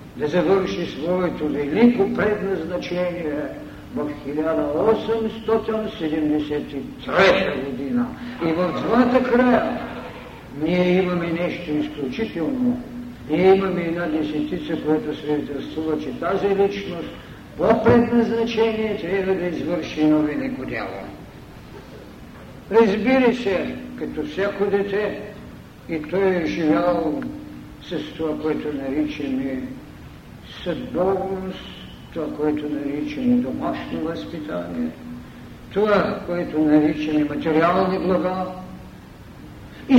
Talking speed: 85 wpm